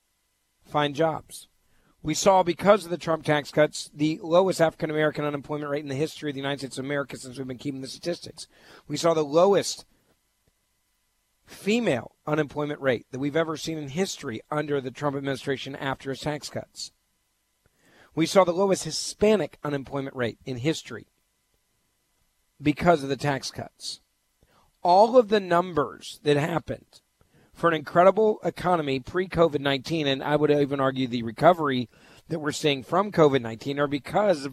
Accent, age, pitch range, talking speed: American, 50-69, 130-165 Hz, 160 wpm